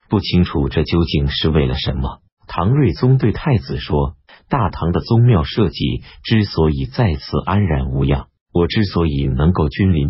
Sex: male